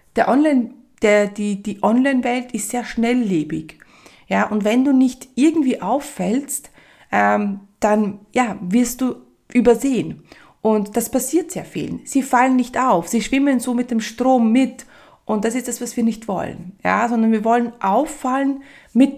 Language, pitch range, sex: German, 210-260 Hz, female